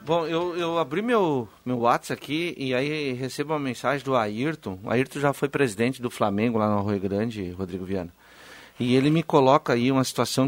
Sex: male